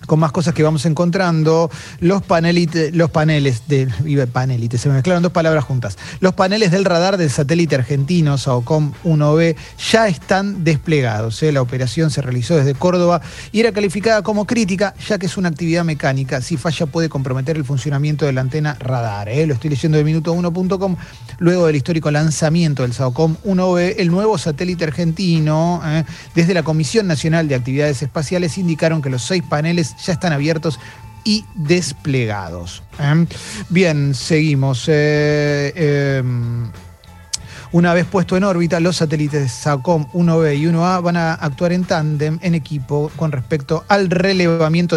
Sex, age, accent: male, 30-49, Argentinian